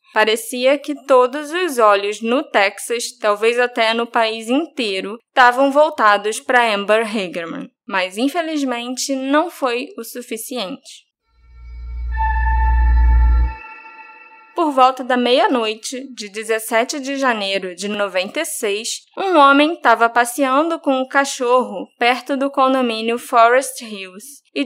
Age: 10-29